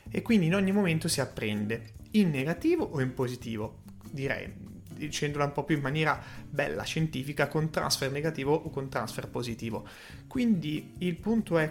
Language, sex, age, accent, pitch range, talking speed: Italian, male, 30-49, native, 130-175 Hz, 165 wpm